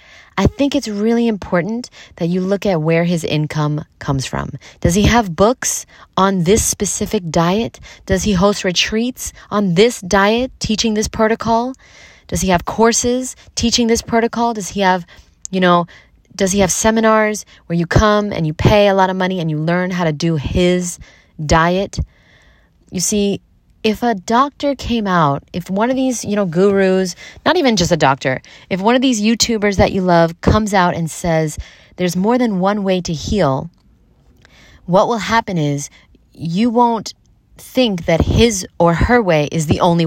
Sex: female